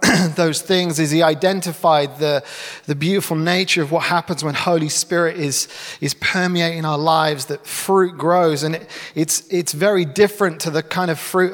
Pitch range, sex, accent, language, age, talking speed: 145-175 Hz, male, British, English, 30-49, 175 wpm